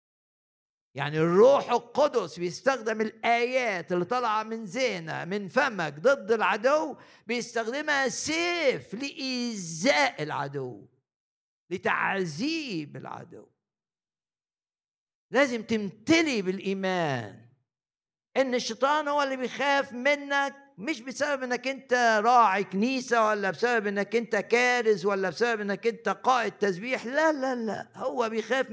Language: Arabic